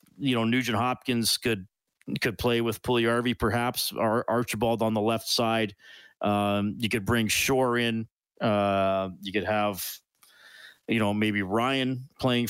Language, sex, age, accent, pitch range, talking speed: English, male, 40-59, American, 110-130 Hz, 150 wpm